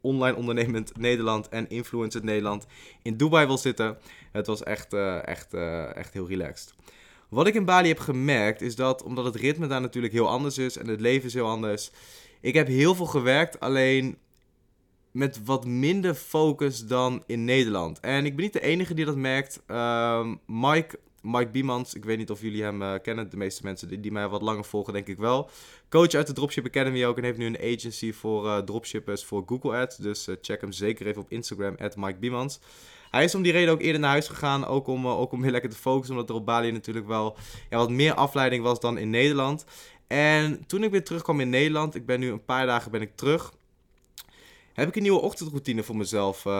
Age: 20-39